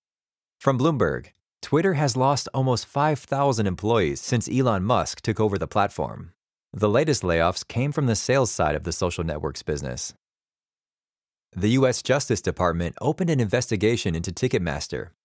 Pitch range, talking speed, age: 95-130 Hz, 145 wpm, 30-49